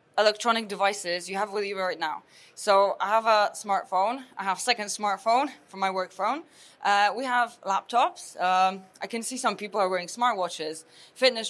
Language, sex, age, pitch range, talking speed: English, female, 20-39, 195-245 Hz, 185 wpm